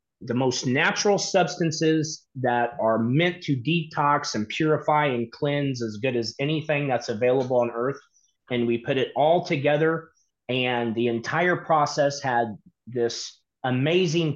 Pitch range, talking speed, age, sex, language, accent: 130-175 Hz, 140 wpm, 30-49, male, English, American